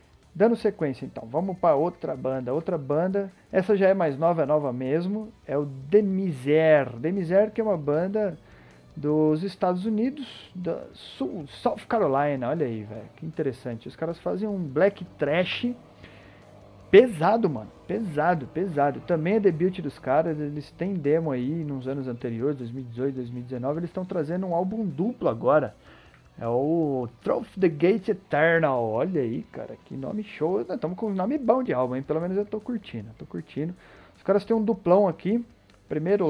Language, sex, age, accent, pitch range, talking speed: Portuguese, male, 40-59, Brazilian, 145-205 Hz, 170 wpm